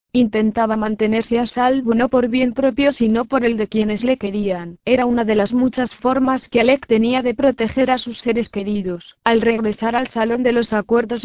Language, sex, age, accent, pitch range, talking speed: Spanish, female, 20-39, Spanish, 220-250 Hz, 195 wpm